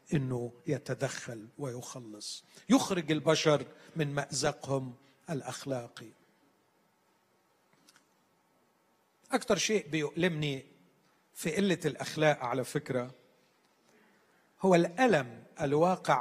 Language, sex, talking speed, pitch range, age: Arabic, male, 70 wpm, 135-175 Hz, 40-59